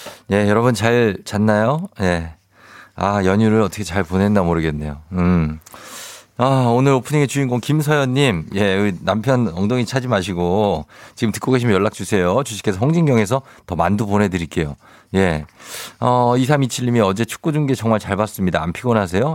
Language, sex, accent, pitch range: Korean, male, native, 95-125 Hz